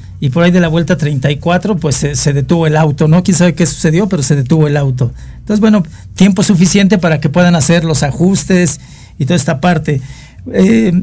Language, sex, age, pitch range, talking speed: Spanish, male, 50-69, 145-180 Hz, 205 wpm